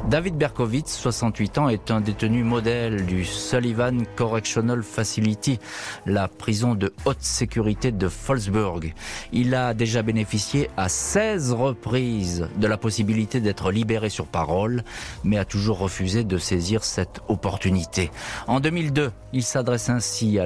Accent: French